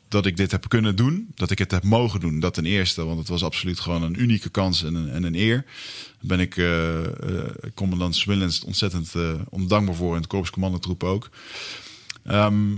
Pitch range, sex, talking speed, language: 85-115 Hz, male, 200 wpm, Dutch